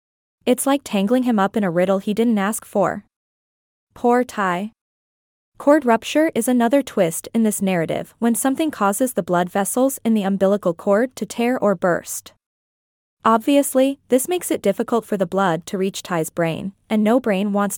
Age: 20-39